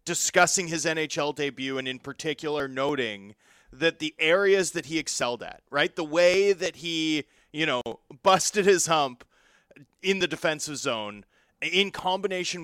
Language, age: English, 30-49